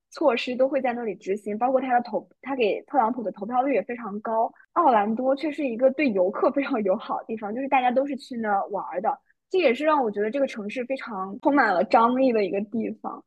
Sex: female